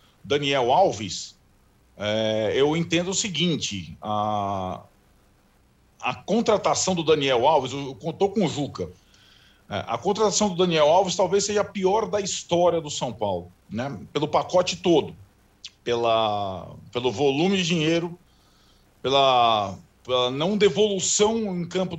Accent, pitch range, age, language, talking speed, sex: Brazilian, 135-195 Hz, 40-59, Portuguese, 130 wpm, male